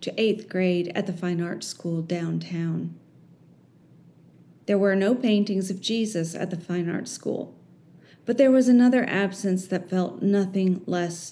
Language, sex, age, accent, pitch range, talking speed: English, female, 30-49, American, 170-210 Hz, 155 wpm